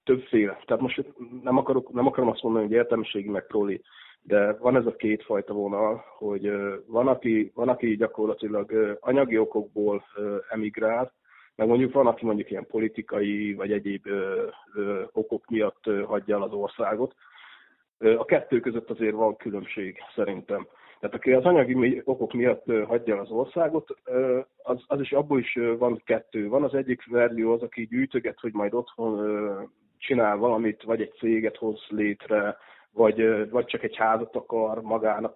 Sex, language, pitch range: male, Hungarian, 105-125 Hz